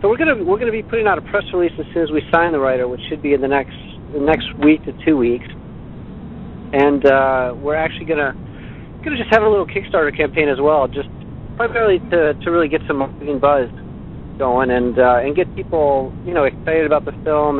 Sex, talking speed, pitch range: male, 230 wpm, 130-160 Hz